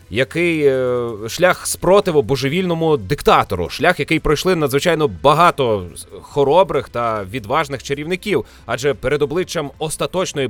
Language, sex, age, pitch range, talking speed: Ukrainian, male, 30-49, 110-155 Hz, 105 wpm